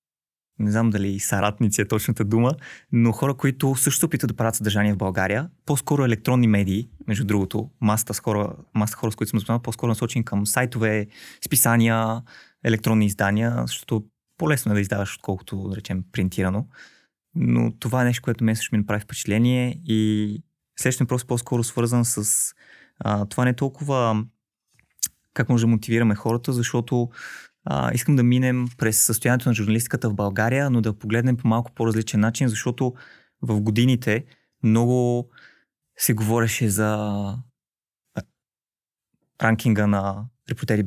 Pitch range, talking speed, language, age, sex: 105-125 Hz, 150 wpm, Bulgarian, 20-39, male